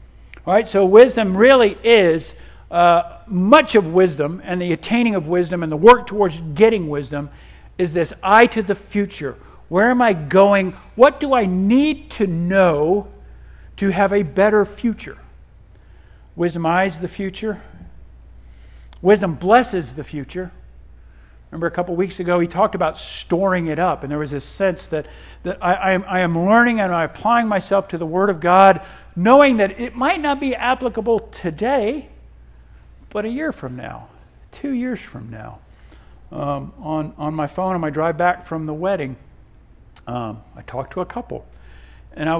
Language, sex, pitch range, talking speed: English, male, 150-210 Hz, 175 wpm